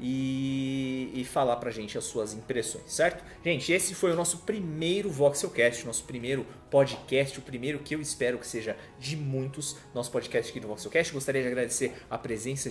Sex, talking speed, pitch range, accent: male, 185 wpm, 115-140 Hz, Brazilian